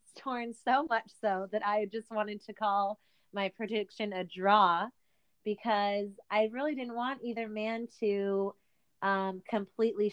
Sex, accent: female, American